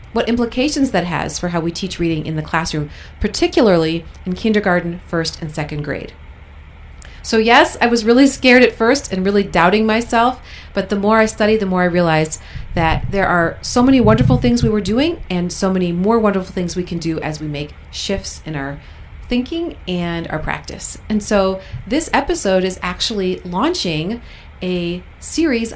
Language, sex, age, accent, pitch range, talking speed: English, female, 40-59, American, 155-210 Hz, 180 wpm